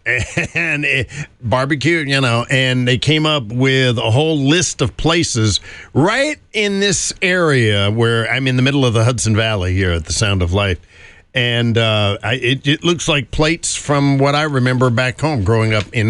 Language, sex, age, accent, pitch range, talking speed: English, male, 50-69, American, 110-145 Hz, 185 wpm